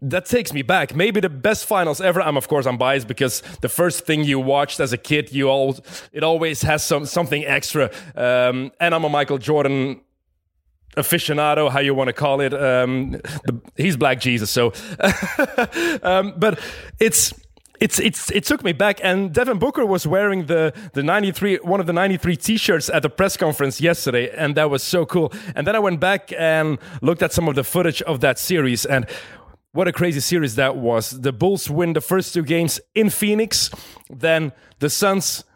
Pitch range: 145-185 Hz